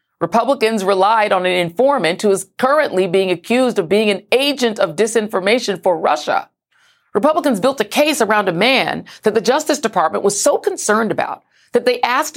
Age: 40-59